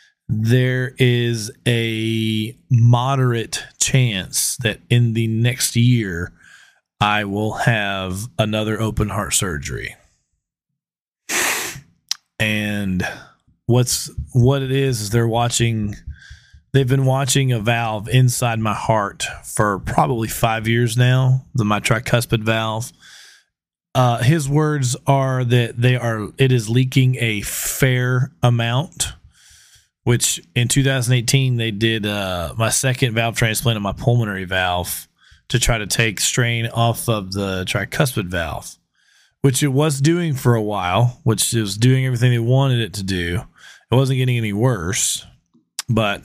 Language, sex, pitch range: English, male, 105-125 Hz